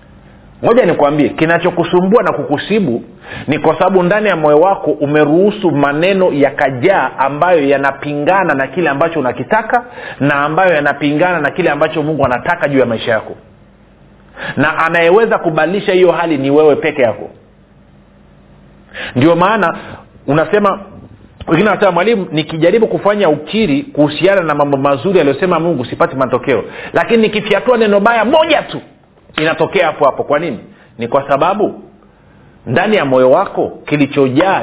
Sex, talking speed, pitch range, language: male, 140 wpm, 140-185 Hz, Swahili